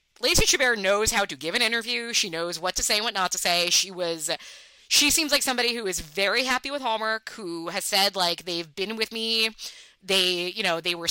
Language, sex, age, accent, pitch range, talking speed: English, female, 20-39, American, 180-235 Hz, 230 wpm